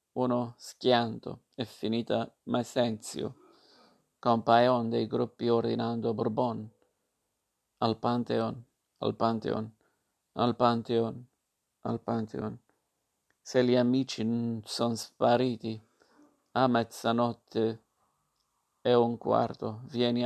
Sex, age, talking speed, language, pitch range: male, 50-69, 90 wpm, Italian, 115-125 Hz